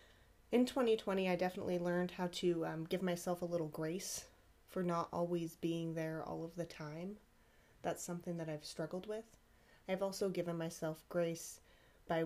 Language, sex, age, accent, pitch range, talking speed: English, female, 30-49, American, 155-180 Hz, 165 wpm